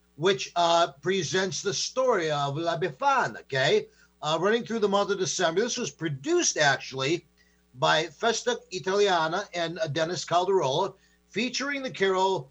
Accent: American